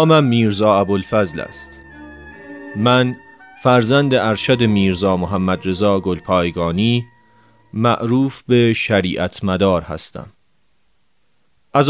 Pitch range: 100-130 Hz